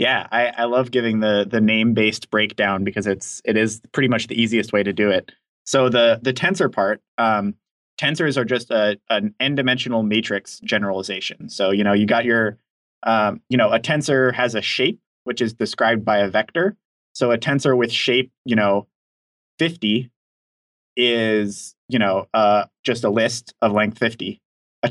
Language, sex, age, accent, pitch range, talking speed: English, male, 20-39, American, 105-125 Hz, 185 wpm